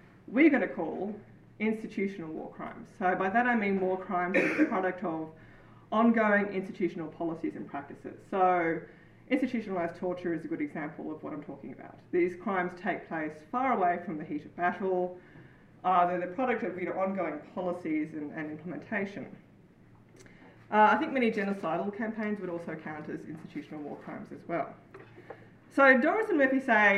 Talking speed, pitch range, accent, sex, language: 170 wpm, 175-230 Hz, Australian, female, English